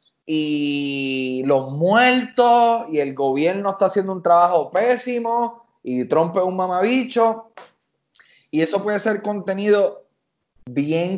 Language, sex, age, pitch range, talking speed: Spanish, male, 20-39, 145-200 Hz, 120 wpm